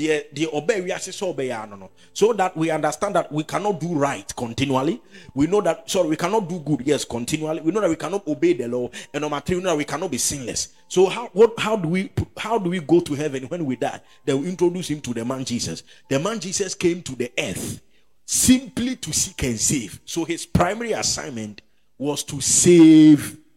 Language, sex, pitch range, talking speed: English, male, 135-195 Hz, 210 wpm